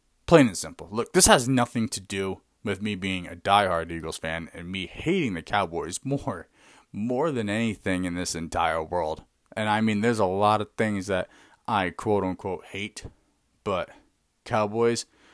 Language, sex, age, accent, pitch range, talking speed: English, male, 30-49, American, 95-125 Hz, 170 wpm